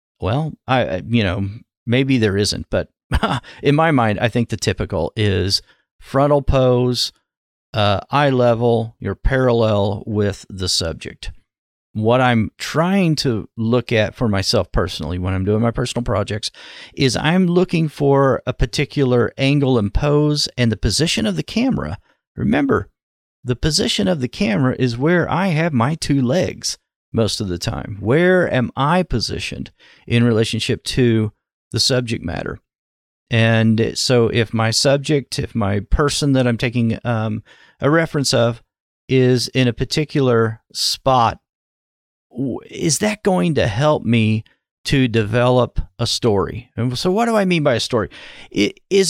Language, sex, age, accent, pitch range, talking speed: English, male, 40-59, American, 110-145 Hz, 150 wpm